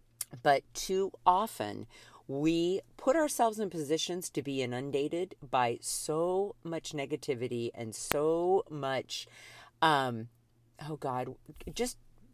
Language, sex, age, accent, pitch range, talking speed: English, female, 50-69, American, 120-160 Hz, 105 wpm